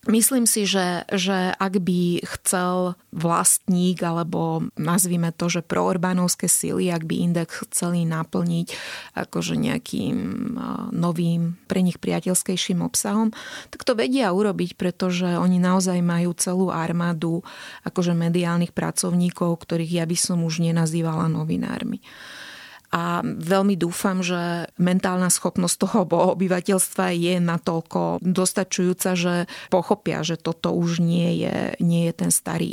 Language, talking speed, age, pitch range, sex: Slovak, 125 wpm, 30-49, 170-190 Hz, female